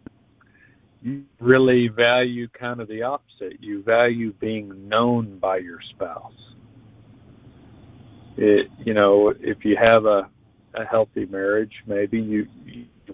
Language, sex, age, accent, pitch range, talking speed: English, male, 50-69, American, 105-125 Hz, 120 wpm